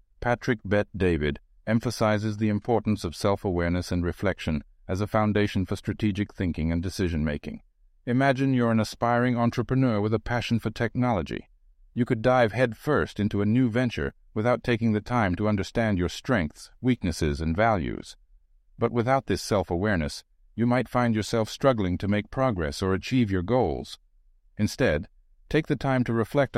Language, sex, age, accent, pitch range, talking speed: English, male, 60-79, American, 85-120 Hz, 155 wpm